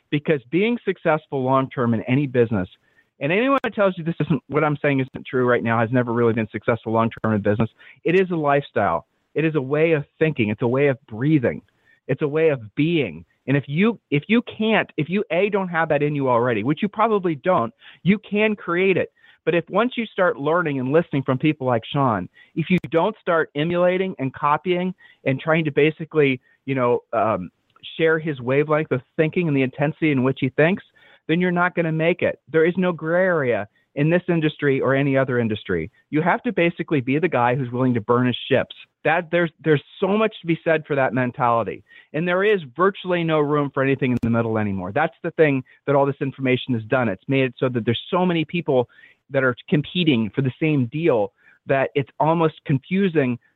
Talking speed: 220 wpm